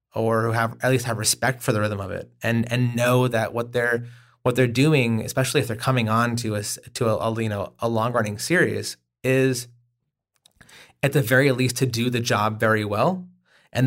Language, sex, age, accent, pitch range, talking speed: English, male, 30-49, American, 115-130 Hz, 210 wpm